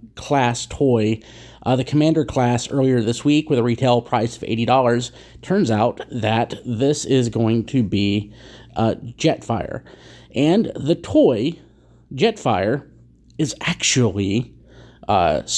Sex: male